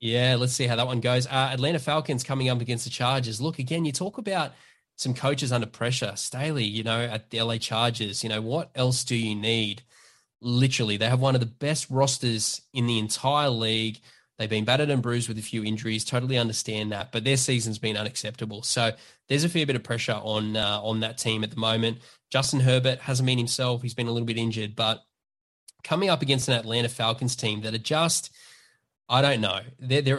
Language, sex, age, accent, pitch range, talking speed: English, male, 10-29, Australian, 110-135 Hz, 215 wpm